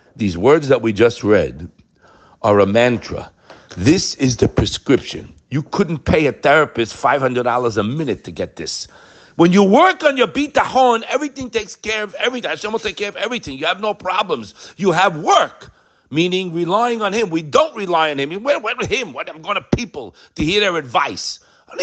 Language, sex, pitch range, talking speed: English, male, 120-185 Hz, 210 wpm